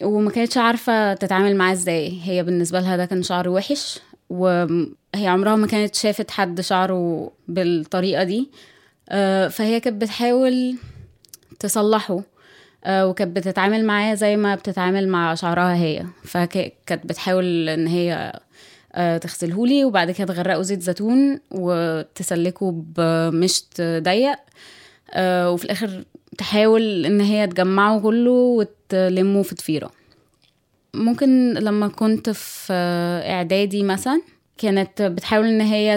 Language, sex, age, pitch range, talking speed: Arabic, female, 20-39, 180-215 Hz, 115 wpm